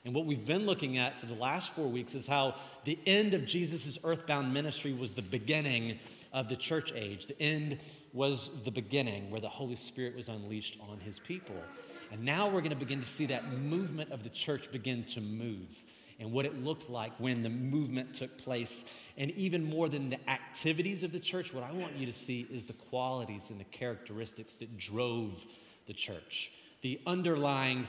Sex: male